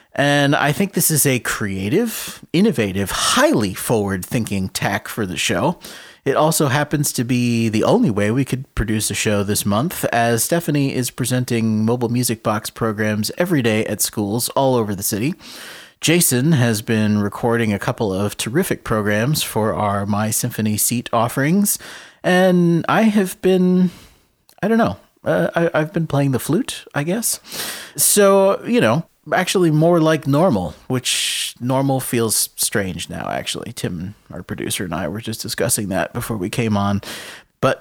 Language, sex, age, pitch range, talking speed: English, male, 30-49, 105-145 Hz, 160 wpm